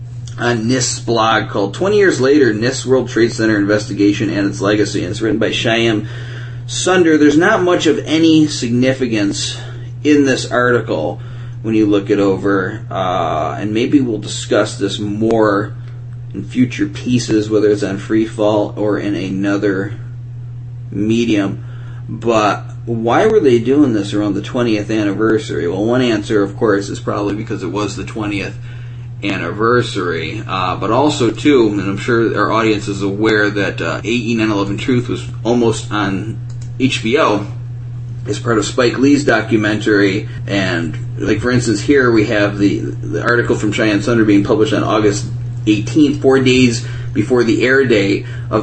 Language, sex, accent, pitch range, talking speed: English, male, American, 105-120 Hz, 160 wpm